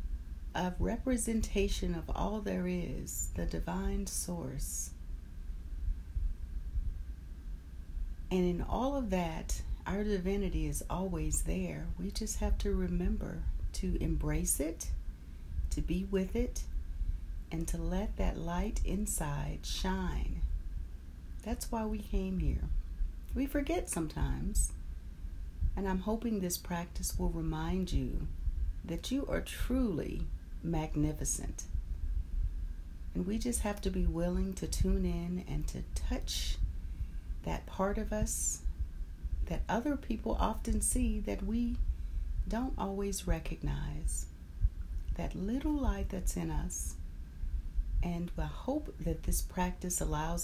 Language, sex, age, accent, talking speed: English, female, 40-59, American, 120 wpm